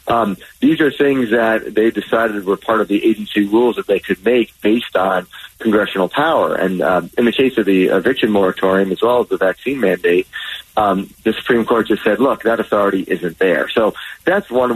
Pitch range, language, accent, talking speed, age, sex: 95-110 Hz, English, American, 205 wpm, 30-49, male